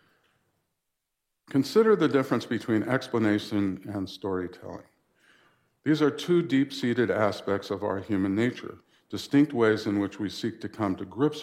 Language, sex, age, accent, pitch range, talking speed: English, male, 50-69, American, 95-120 Hz, 135 wpm